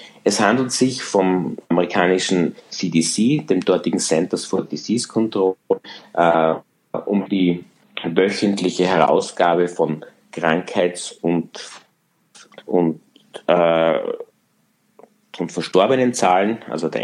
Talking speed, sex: 90 wpm, male